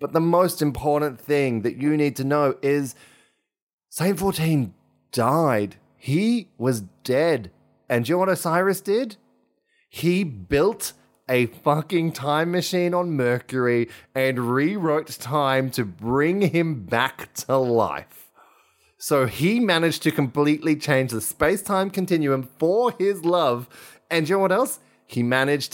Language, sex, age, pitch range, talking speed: English, male, 20-39, 120-160 Hz, 145 wpm